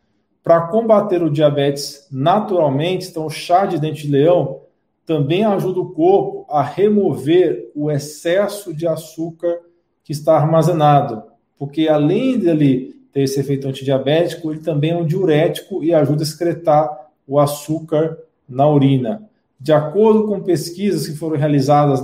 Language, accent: Portuguese, Brazilian